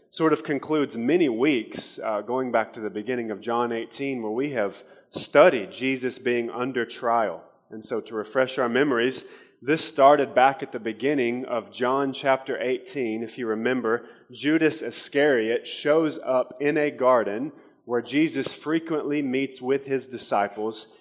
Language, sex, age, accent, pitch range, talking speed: English, male, 30-49, American, 120-145 Hz, 155 wpm